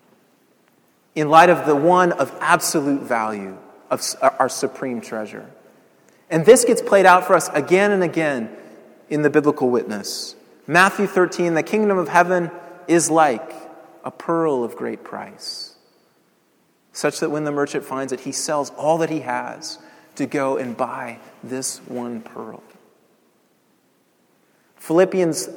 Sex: male